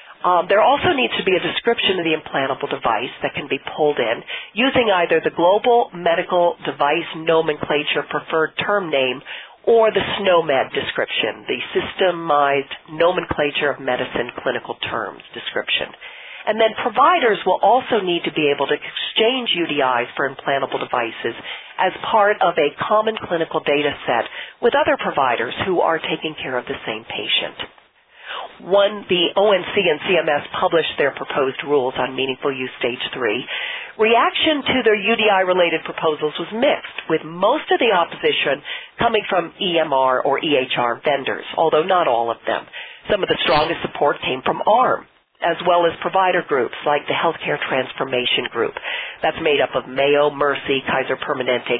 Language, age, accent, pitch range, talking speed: English, 40-59, American, 145-205 Hz, 160 wpm